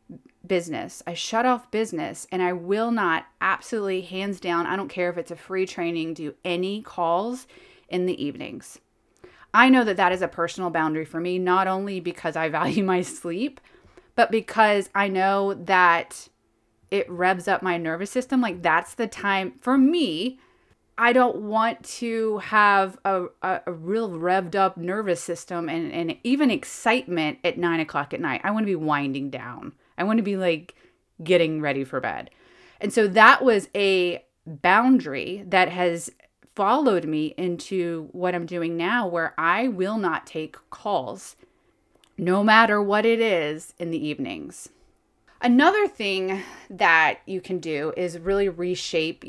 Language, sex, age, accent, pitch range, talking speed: English, female, 30-49, American, 170-220 Hz, 165 wpm